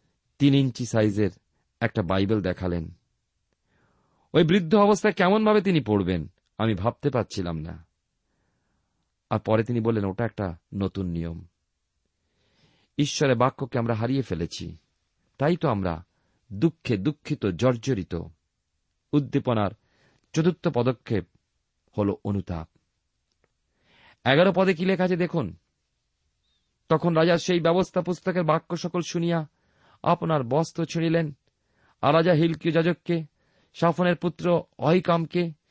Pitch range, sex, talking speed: 110-170 Hz, male, 105 wpm